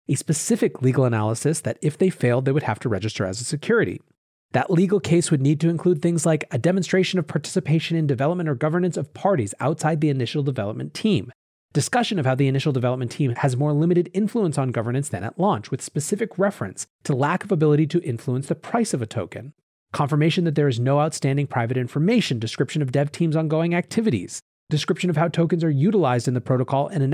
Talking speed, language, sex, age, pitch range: 210 wpm, English, male, 30-49, 130-170 Hz